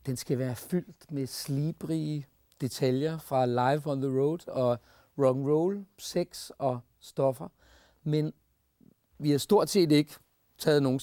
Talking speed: 140 wpm